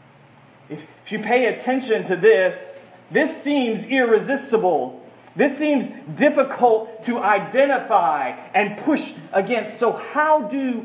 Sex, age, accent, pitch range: male, 30-49, American, 190-255 Hz